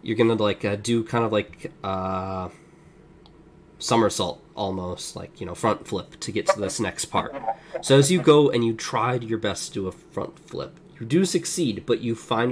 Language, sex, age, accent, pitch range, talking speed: English, male, 20-39, American, 105-160 Hz, 200 wpm